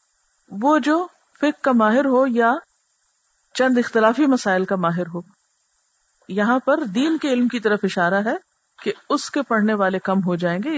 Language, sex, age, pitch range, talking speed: Urdu, female, 50-69, 195-260 Hz, 175 wpm